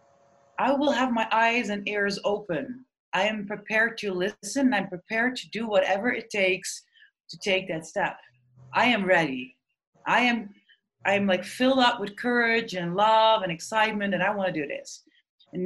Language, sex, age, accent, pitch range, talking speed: Dutch, female, 20-39, Dutch, 185-255 Hz, 180 wpm